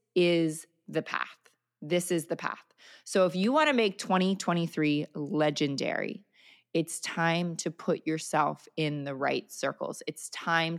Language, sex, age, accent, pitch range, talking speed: English, female, 30-49, American, 160-210 Hz, 145 wpm